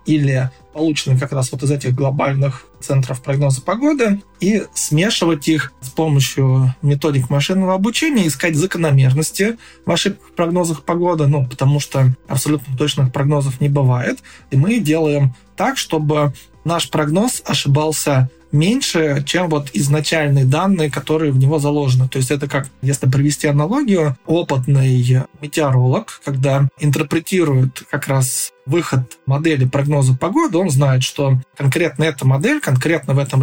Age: 20-39